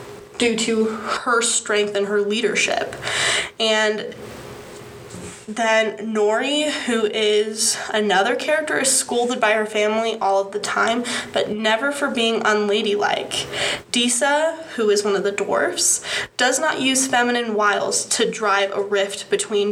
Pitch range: 205-235 Hz